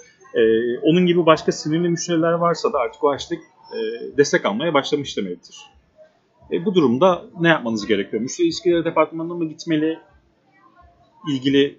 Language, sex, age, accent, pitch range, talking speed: Turkish, male, 40-59, native, 130-180 Hz, 145 wpm